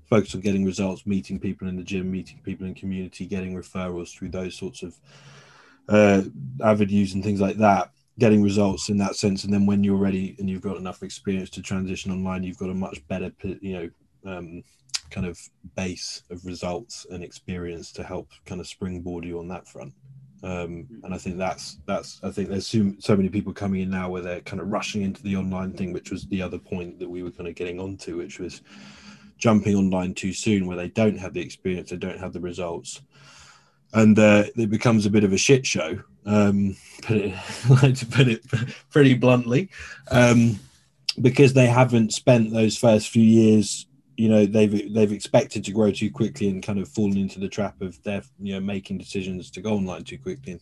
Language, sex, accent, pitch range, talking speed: English, male, British, 90-105 Hz, 205 wpm